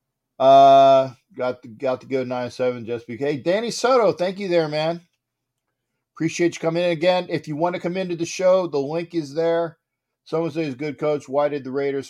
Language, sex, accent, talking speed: English, male, American, 210 wpm